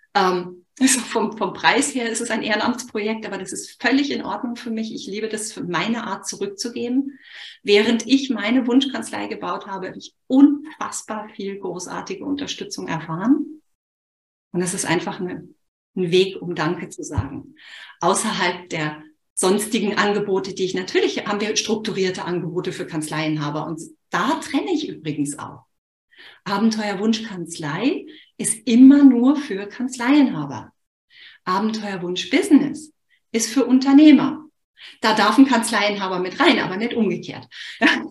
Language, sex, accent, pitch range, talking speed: German, female, German, 190-265 Hz, 135 wpm